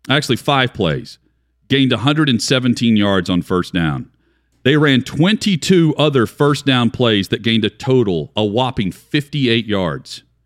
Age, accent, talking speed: 40-59, American, 140 wpm